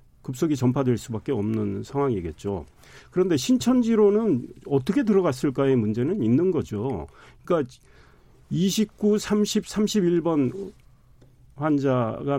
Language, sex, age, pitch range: Korean, male, 40-59, 125-175 Hz